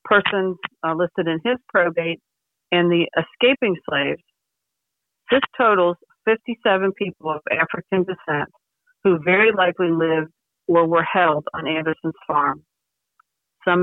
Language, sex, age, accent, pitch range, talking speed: English, female, 50-69, American, 160-195 Hz, 120 wpm